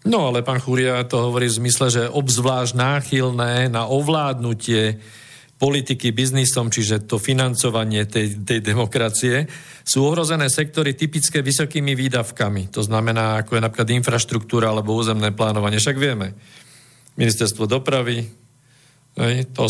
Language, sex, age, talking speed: Slovak, male, 50-69, 125 wpm